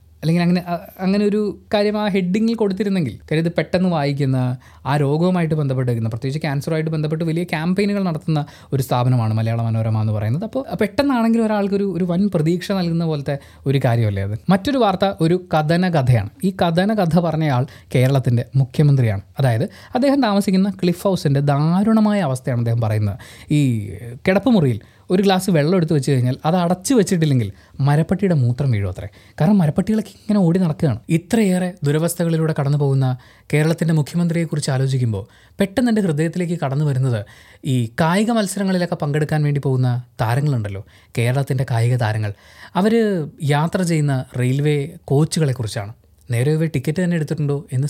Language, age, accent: Malayalam, 20-39, native